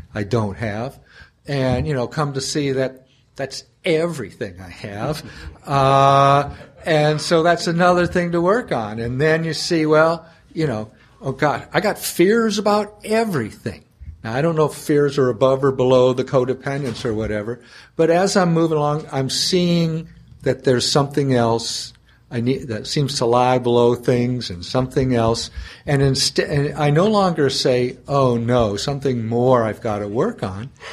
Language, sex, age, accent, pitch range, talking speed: English, male, 60-79, American, 120-150 Hz, 175 wpm